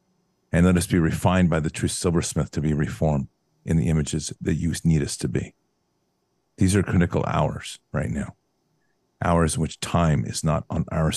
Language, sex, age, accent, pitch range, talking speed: English, male, 50-69, American, 75-90 Hz, 190 wpm